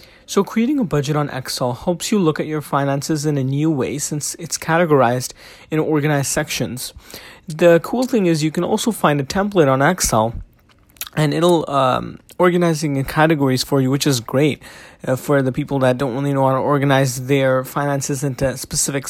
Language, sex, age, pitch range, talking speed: English, male, 20-39, 135-175 Hz, 190 wpm